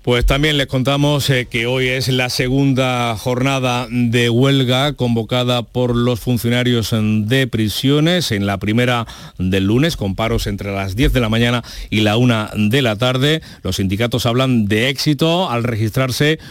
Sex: male